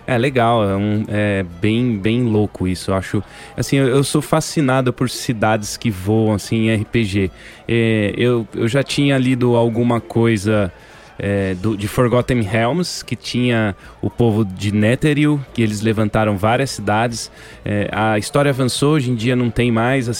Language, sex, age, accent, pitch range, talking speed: Portuguese, male, 20-39, Brazilian, 105-125 Hz, 145 wpm